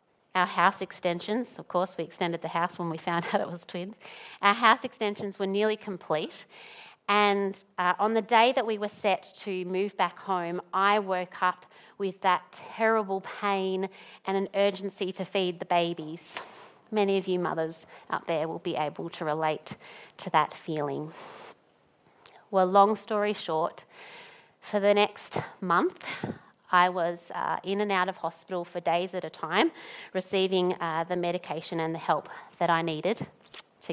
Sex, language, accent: female, English, Australian